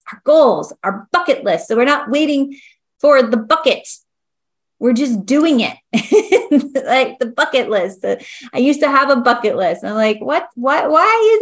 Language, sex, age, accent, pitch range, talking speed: English, female, 30-49, American, 180-255 Hz, 180 wpm